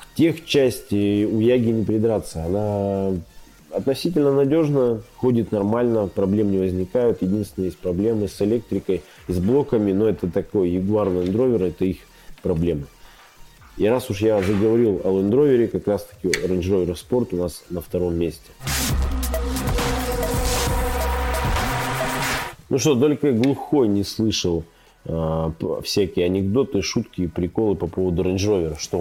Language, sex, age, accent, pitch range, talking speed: Russian, male, 30-49, native, 95-120 Hz, 130 wpm